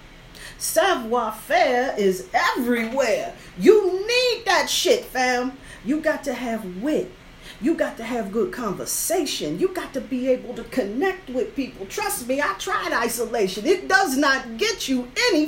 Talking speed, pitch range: 155 wpm, 175-270 Hz